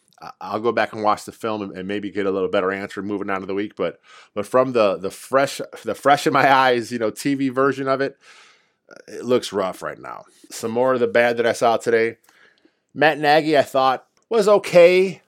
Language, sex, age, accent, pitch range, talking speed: English, male, 20-39, American, 105-135 Hz, 220 wpm